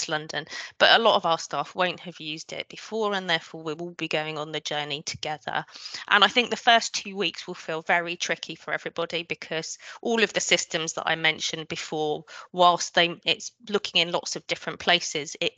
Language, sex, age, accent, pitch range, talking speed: English, female, 20-39, British, 150-175 Hz, 210 wpm